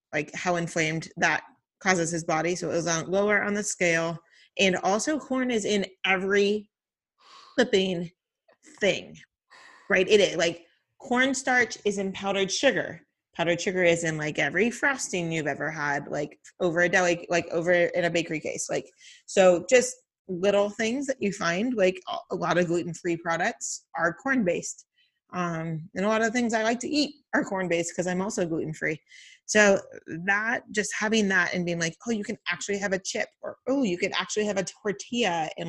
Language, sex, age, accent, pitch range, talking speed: English, female, 30-49, American, 170-220 Hz, 180 wpm